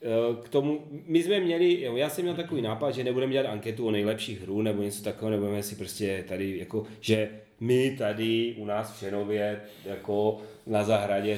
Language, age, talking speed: Czech, 30-49, 180 wpm